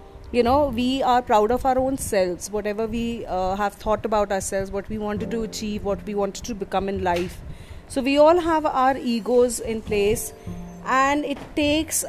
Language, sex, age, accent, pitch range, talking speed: English, female, 30-49, Indian, 200-270 Hz, 195 wpm